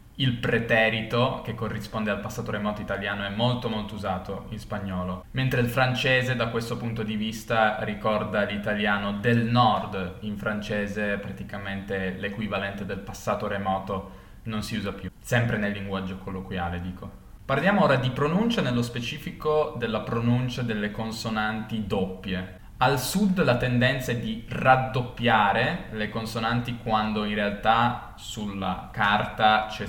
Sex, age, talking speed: male, 20-39, 135 wpm